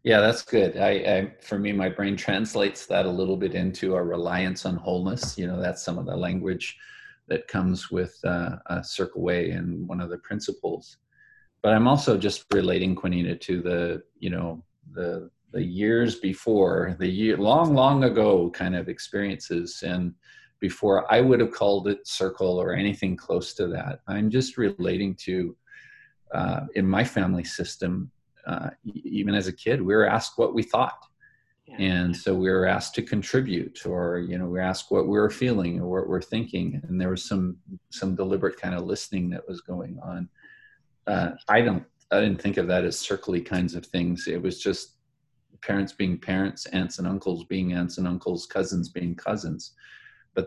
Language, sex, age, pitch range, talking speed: English, male, 40-59, 90-105 Hz, 185 wpm